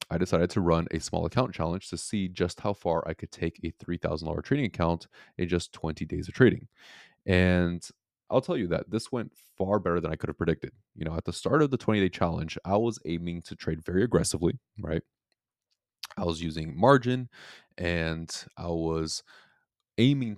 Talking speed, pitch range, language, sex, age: 195 wpm, 80-100 Hz, English, male, 20-39